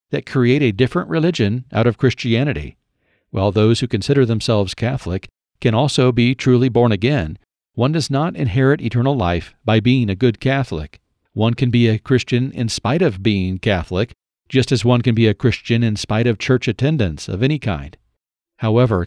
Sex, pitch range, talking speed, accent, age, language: male, 105-130 Hz, 180 wpm, American, 50-69, English